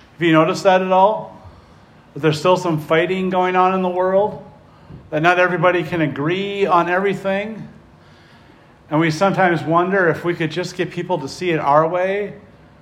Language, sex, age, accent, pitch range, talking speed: English, male, 50-69, American, 150-195 Hz, 180 wpm